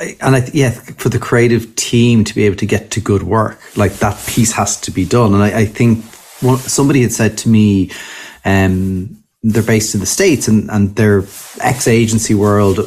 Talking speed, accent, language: 205 wpm, Irish, English